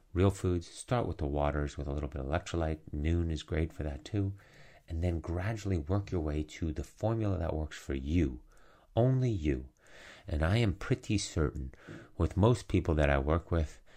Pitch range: 75-100 Hz